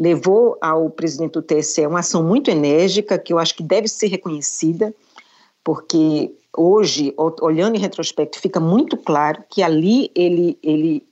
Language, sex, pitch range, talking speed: Portuguese, female, 170-225 Hz, 150 wpm